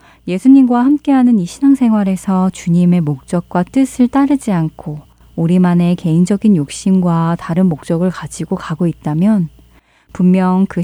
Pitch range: 165-215 Hz